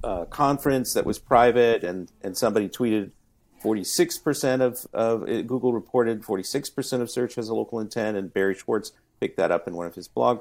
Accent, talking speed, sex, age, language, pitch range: American, 185 wpm, male, 50-69, English, 105-135 Hz